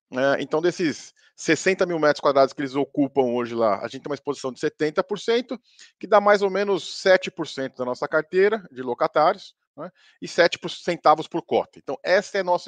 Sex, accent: male, Brazilian